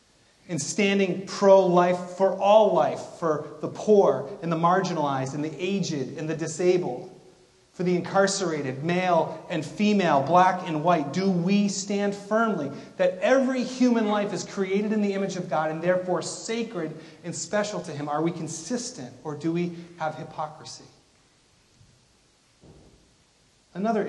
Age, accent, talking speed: 30-49, American, 145 wpm